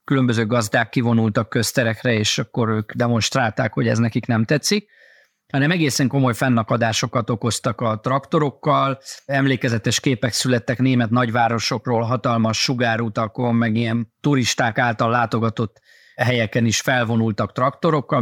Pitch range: 115-135 Hz